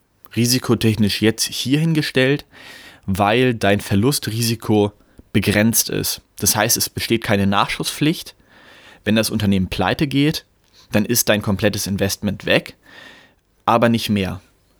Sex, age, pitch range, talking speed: male, 20-39, 95-115 Hz, 120 wpm